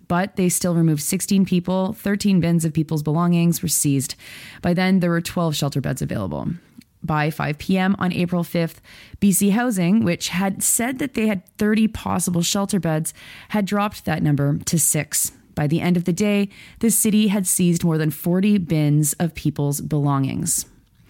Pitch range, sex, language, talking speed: 155-195 Hz, female, English, 175 wpm